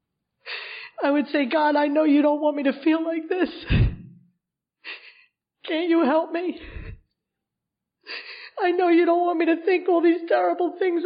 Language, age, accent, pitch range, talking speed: English, 40-59, American, 295-360 Hz, 165 wpm